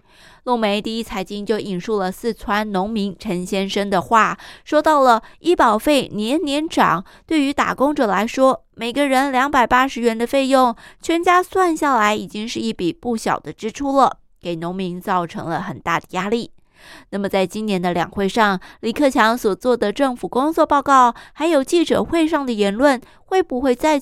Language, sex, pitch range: Chinese, female, 200-270 Hz